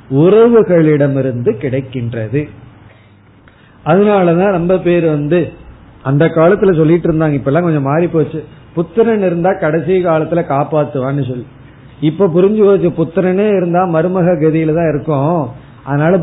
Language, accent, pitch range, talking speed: Tamil, native, 140-190 Hz, 105 wpm